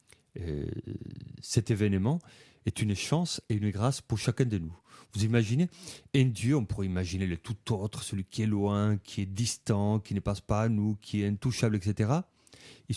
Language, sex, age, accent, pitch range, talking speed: French, male, 40-59, French, 100-130 Hz, 190 wpm